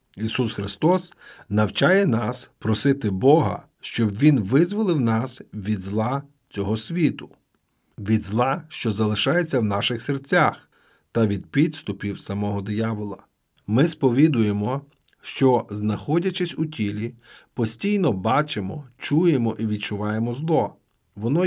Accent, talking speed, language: native, 110 wpm, Ukrainian